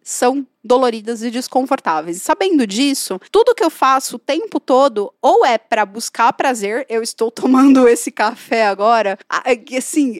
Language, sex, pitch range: Portuguese, female, 240-300 Hz